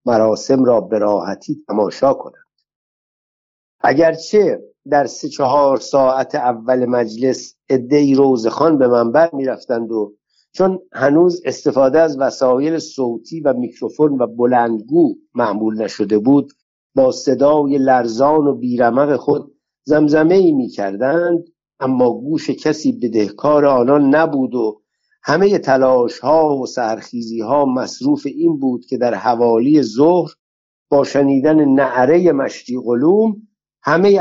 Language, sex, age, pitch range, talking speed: Persian, male, 60-79, 125-165 Hz, 120 wpm